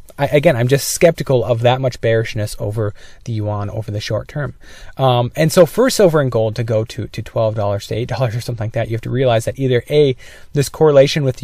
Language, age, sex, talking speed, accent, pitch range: English, 20-39, male, 230 wpm, American, 110-140 Hz